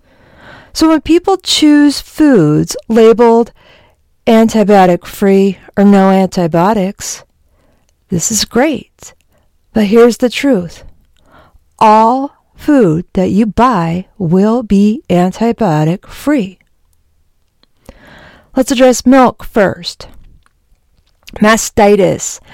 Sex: female